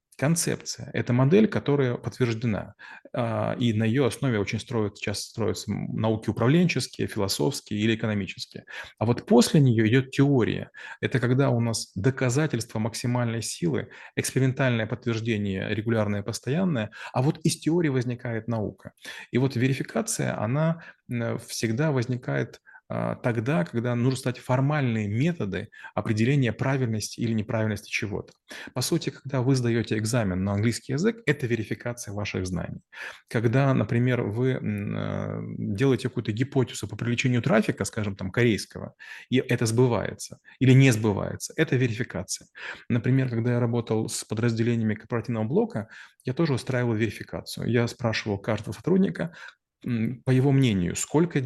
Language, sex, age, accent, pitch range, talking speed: Russian, male, 30-49, native, 110-135 Hz, 130 wpm